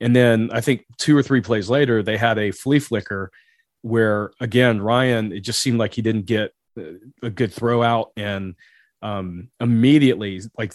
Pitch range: 110-135 Hz